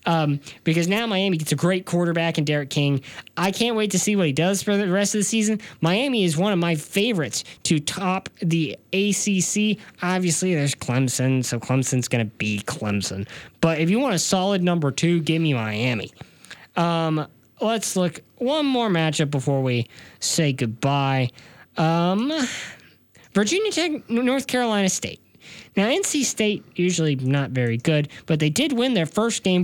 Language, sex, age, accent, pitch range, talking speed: English, male, 10-29, American, 145-215 Hz, 170 wpm